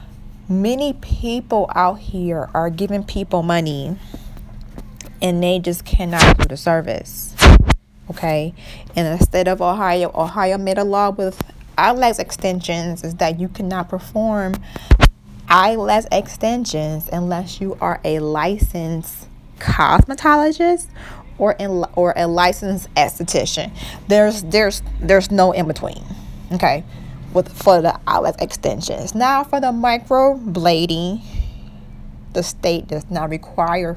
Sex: female